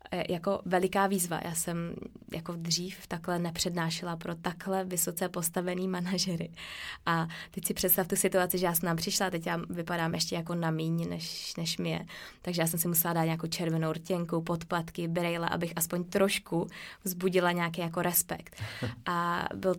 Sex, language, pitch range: female, Czech, 170-195 Hz